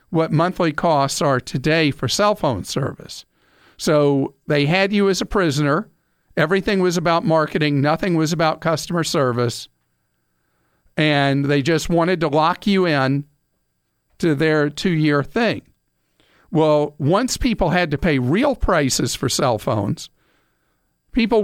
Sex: male